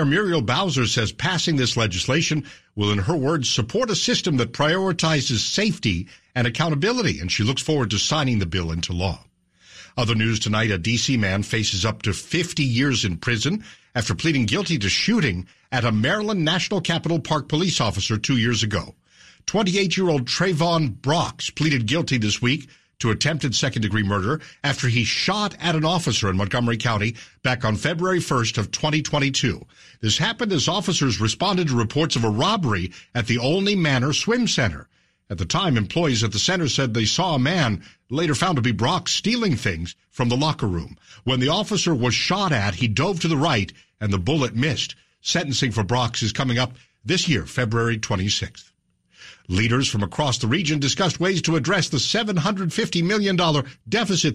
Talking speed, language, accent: 180 wpm, English, American